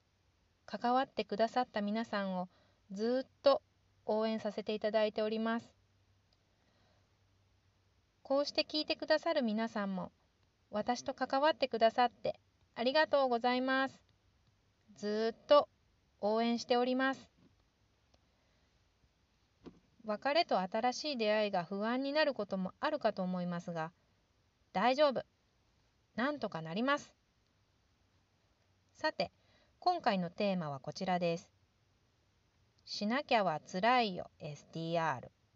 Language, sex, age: Japanese, female, 30-49